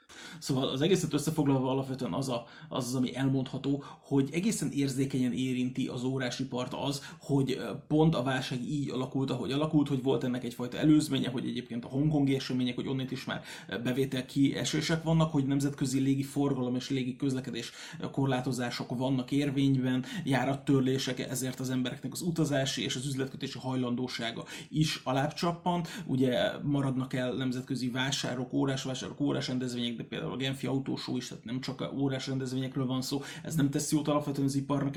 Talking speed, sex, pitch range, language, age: 155 wpm, male, 130-145 Hz, Hungarian, 30-49